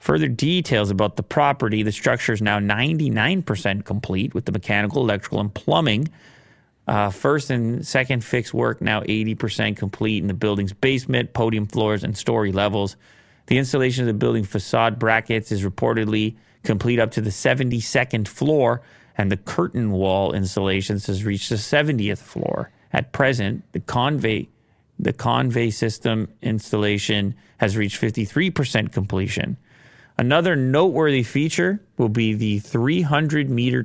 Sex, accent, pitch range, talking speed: male, American, 105-125 Hz, 140 wpm